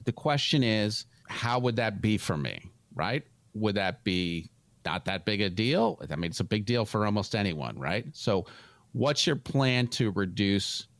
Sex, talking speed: male, 185 wpm